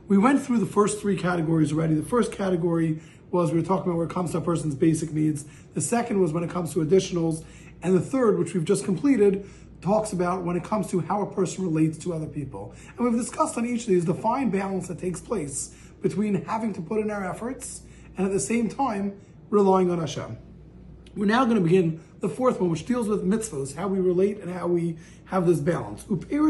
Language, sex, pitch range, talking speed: English, male, 175-225 Hz, 230 wpm